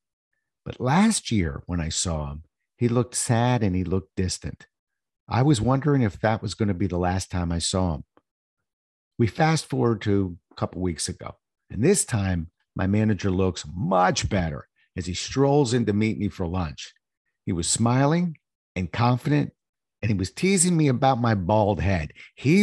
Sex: male